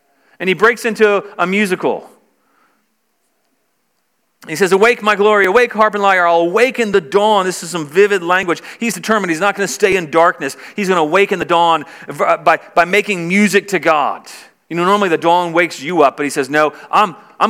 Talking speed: 200 wpm